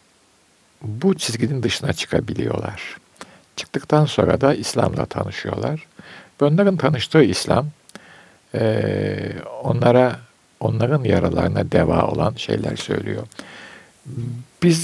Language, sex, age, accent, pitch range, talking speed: Turkish, male, 60-79, native, 105-150 Hz, 90 wpm